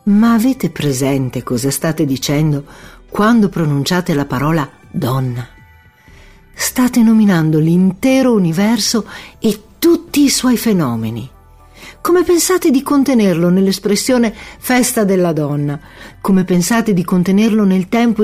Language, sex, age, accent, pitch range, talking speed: Italian, female, 50-69, native, 145-205 Hz, 110 wpm